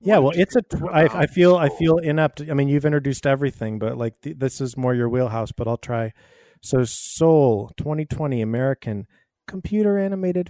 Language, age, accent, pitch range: English, 30-49, American, 115-145 Hz